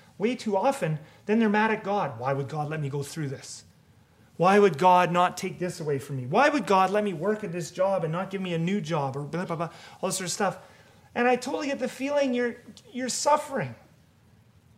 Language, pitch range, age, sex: English, 175-245 Hz, 30-49, male